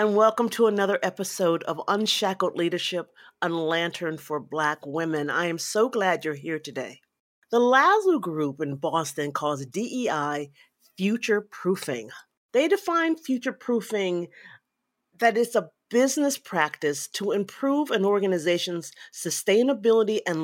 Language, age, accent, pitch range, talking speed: English, 40-59, American, 160-240 Hz, 120 wpm